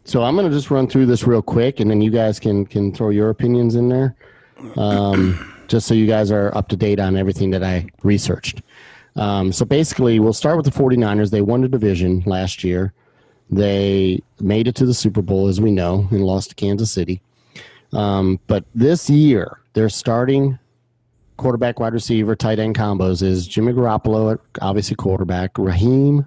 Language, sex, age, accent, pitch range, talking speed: English, male, 30-49, American, 95-125 Hz, 185 wpm